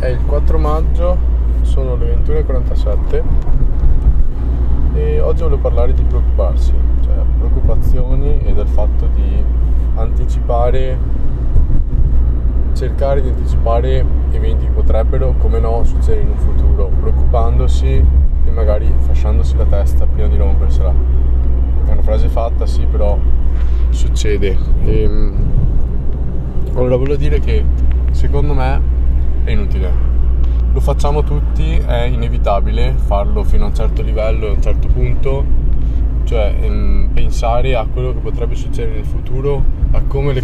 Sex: male